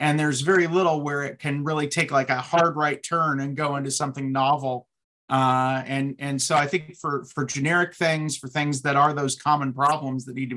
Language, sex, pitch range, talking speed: Hungarian, male, 135-170 Hz, 220 wpm